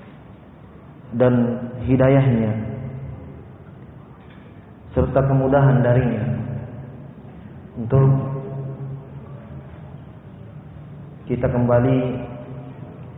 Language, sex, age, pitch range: Indonesian, male, 40-59, 120-135 Hz